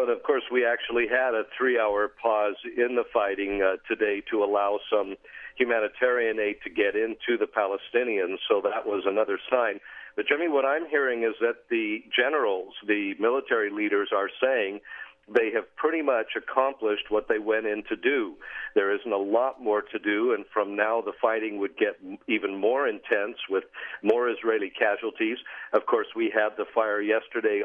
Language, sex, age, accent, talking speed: English, male, 50-69, American, 180 wpm